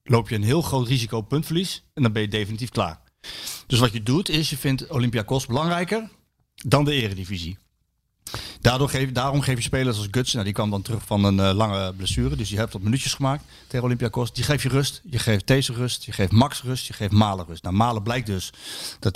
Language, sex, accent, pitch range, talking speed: Dutch, male, Dutch, 110-140 Hz, 220 wpm